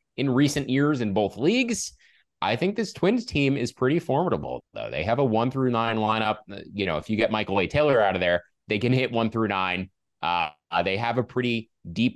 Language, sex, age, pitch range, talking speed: English, male, 20-39, 100-135 Hz, 220 wpm